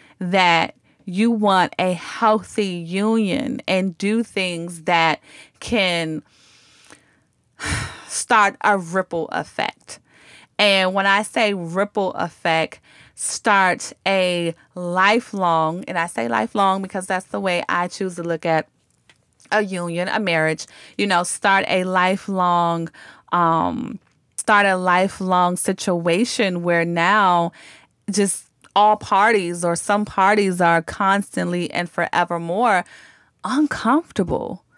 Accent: American